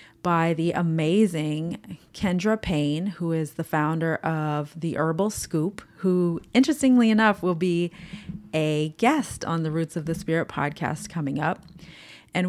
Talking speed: 145 wpm